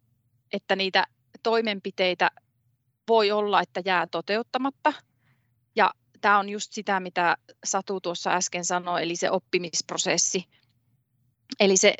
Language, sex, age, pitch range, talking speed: Finnish, female, 30-49, 175-200 Hz, 110 wpm